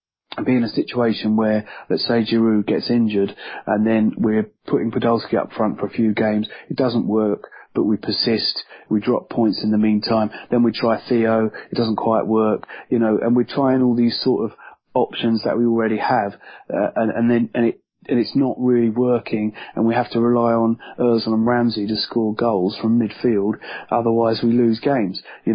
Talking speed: 200 wpm